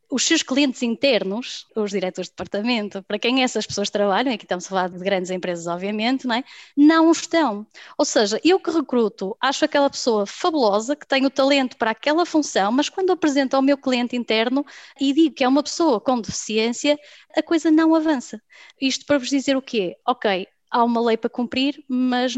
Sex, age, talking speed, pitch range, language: female, 20-39, 190 wpm, 215-285 Hz, Portuguese